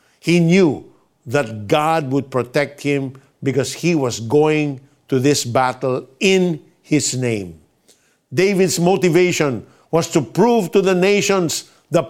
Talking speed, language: 130 wpm, Filipino